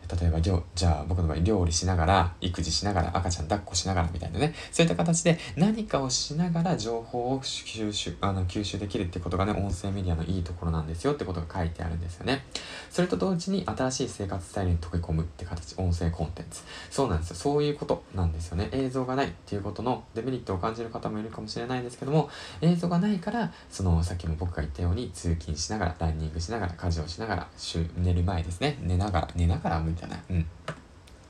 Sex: male